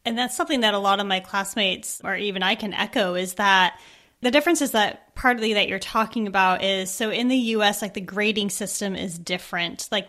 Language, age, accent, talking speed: English, 20-39, American, 220 wpm